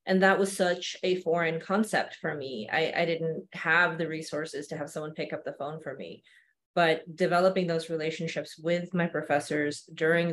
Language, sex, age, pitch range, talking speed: English, female, 20-39, 160-190 Hz, 185 wpm